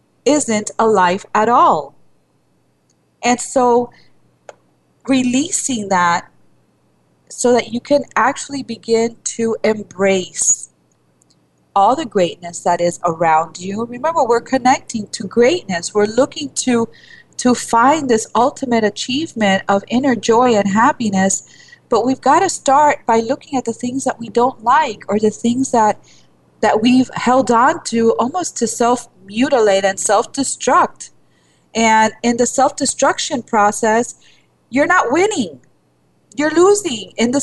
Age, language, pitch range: 30-49, English, 200-260 Hz